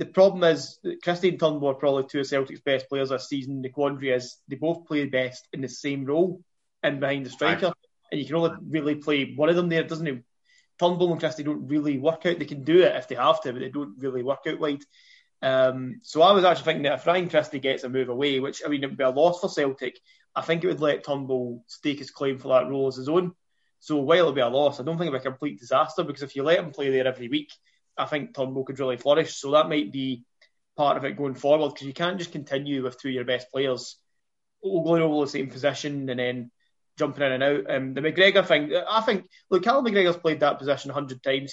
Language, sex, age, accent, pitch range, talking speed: English, male, 20-39, British, 135-165 Hz, 265 wpm